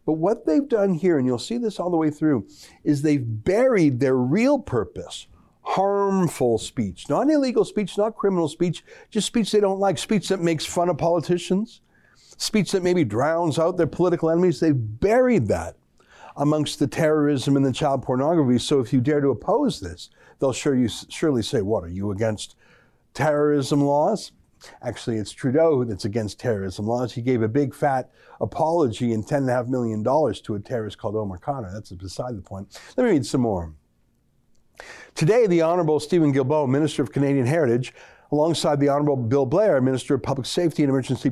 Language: English